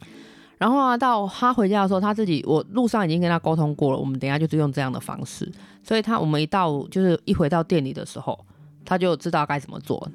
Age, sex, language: 20-39, female, Chinese